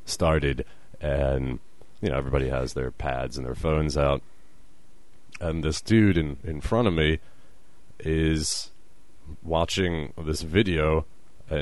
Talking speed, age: 130 wpm, 30-49